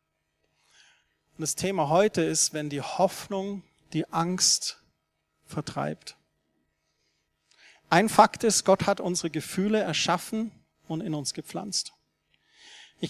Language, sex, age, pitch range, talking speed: German, male, 40-59, 160-210 Hz, 110 wpm